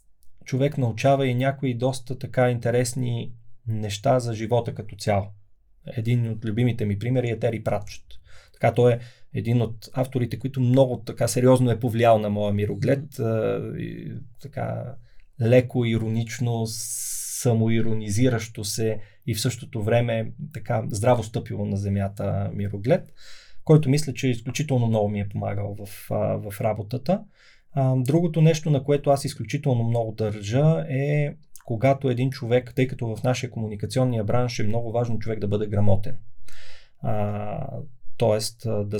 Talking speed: 135 wpm